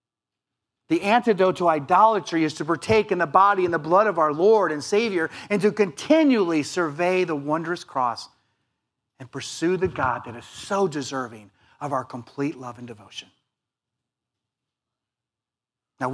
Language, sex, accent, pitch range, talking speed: English, male, American, 130-210 Hz, 150 wpm